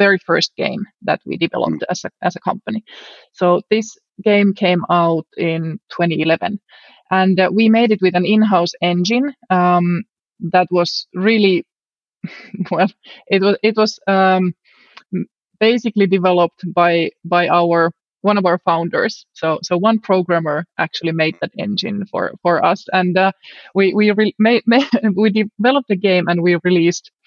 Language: English